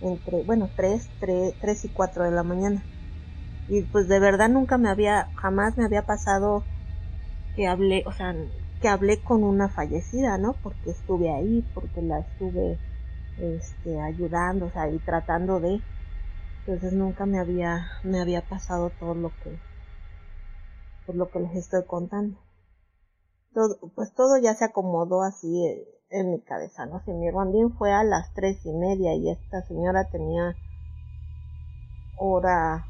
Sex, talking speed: female, 155 wpm